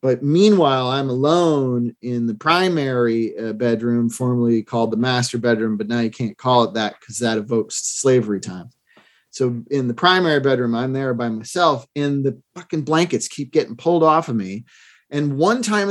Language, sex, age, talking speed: English, male, 40-59, 180 wpm